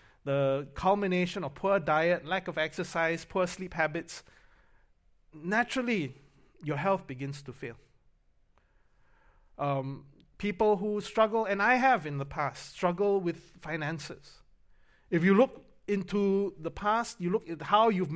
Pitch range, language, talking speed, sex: 150-205 Hz, English, 135 wpm, male